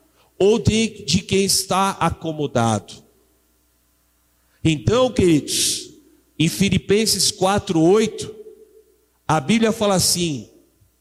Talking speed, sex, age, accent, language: 80 wpm, male, 50-69, Brazilian, Portuguese